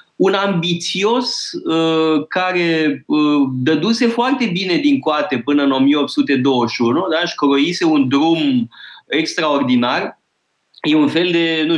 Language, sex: Romanian, male